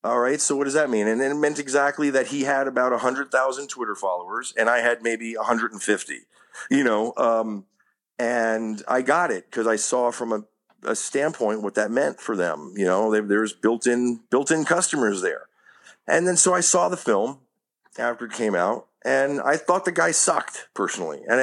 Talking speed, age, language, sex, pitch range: 195 wpm, 40-59, English, male, 115-140 Hz